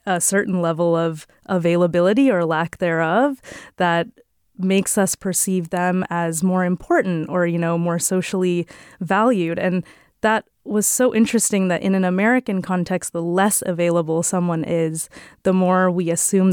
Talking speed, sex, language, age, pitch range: 150 wpm, female, English, 20-39, 175-200 Hz